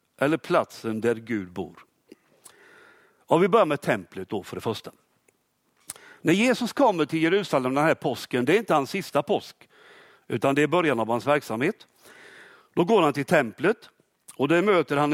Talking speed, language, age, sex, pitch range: 170 wpm, Swedish, 60-79, male, 130-205 Hz